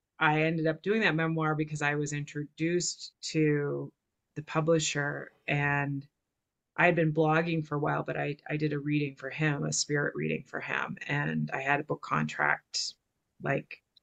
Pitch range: 145-155 Hz